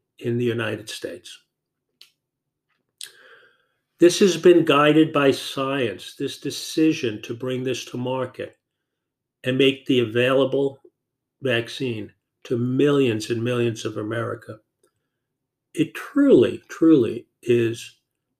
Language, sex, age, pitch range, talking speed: English, male, 50-69, 120-155 Hz, 105 wpm